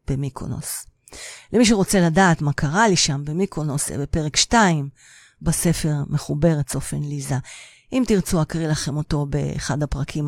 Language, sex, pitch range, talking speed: Hebrew, female, 145-185 Hz, 130 wpm